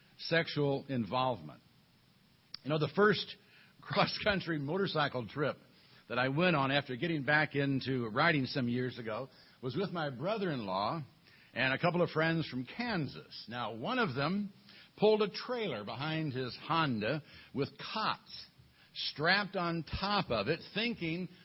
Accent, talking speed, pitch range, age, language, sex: American, 140 wpm, 135-185 Hz, 60-79, English, male